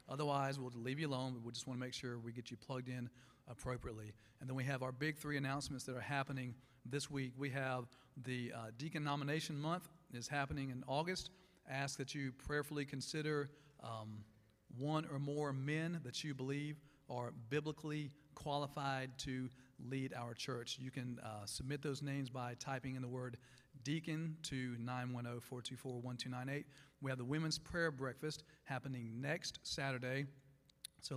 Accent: American